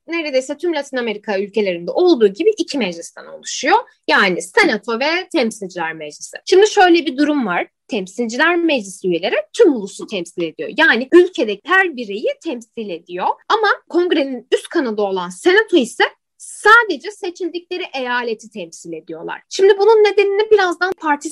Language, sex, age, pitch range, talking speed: Turkish, female, 10-29, 215-360 Hz, 140 wpm